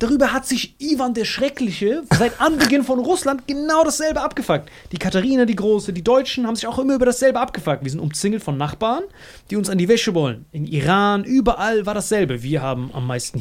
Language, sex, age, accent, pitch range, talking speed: German, male, 30-49, German, 145-210 Hz, 205 wpm